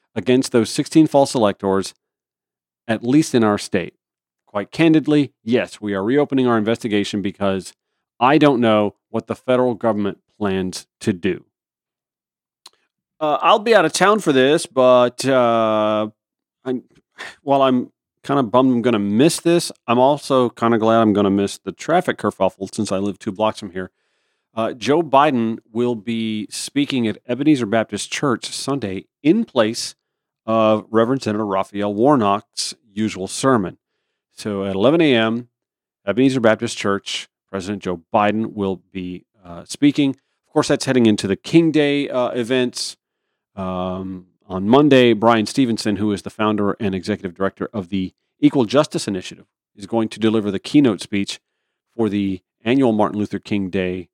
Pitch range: 100-130 Hz